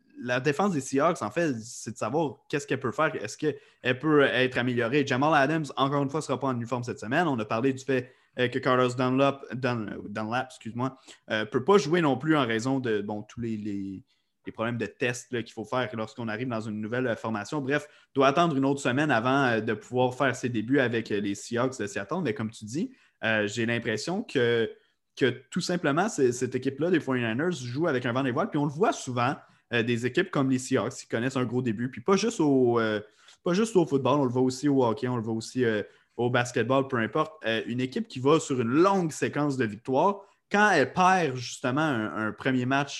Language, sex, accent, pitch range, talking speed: French, male, Canadian, 115-145 Hz, 225 wpm